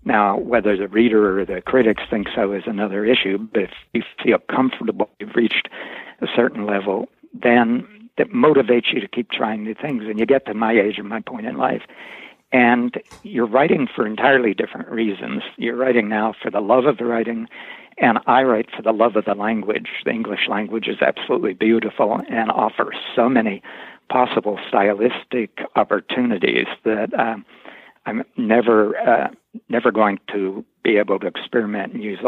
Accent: American